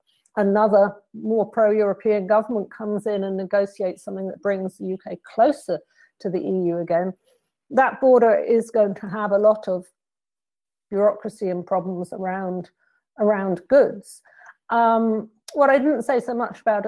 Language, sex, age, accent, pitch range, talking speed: English, female, 50-69, British, 190-245 Hz, 145 wpm